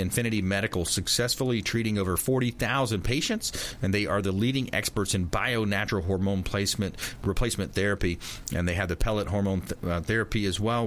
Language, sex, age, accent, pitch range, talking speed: English, male, 40-59, American, 95-120 Hz, 175 wpm